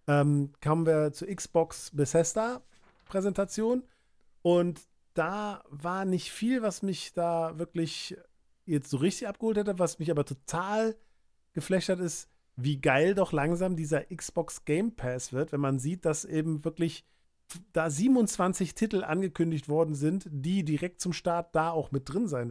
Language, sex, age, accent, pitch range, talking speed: German, male, 40-59, German, 150-185 Hz, 150 wpm